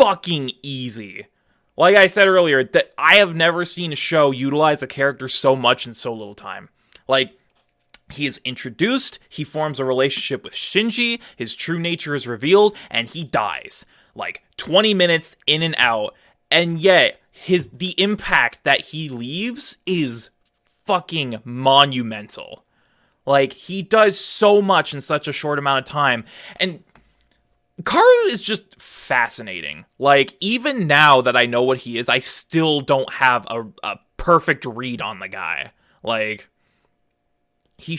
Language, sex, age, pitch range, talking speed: English, male, 20-39, 125-190 Hz, 150 wpm